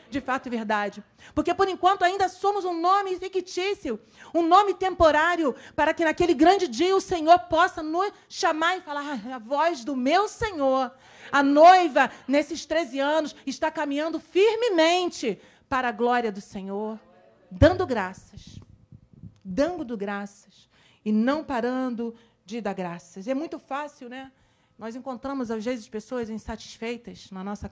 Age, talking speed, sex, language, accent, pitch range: 40-59, 145 wpm, female, Portuguese, Brazilian, 245-360 Hz